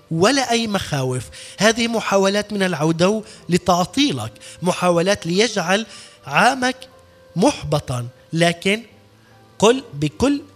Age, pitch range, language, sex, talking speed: 20-39, 155-210 Hz, Arabic, male, 85 wpm